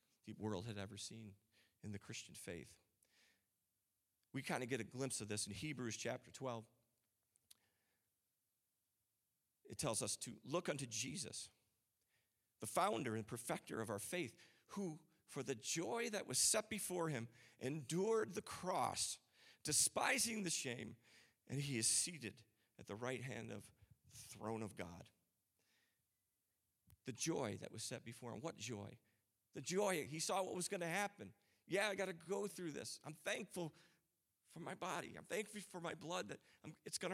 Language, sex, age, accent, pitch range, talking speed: English, male, 40-59, American, 110-180 Hz, 165 wpm